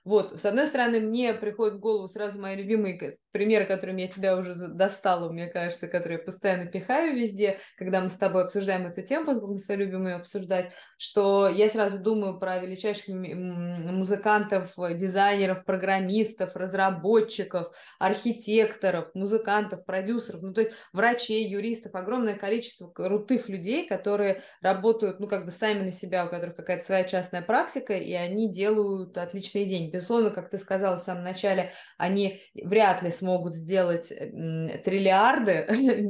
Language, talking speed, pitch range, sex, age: Russian, 150 wpm, 180-210 Hz, female, 20-39